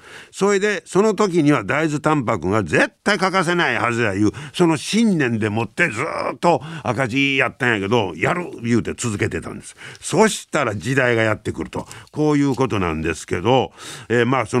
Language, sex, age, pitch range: Japanese, male, 50-69, 105-135 Hz